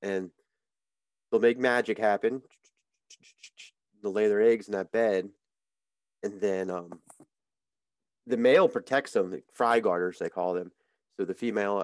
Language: English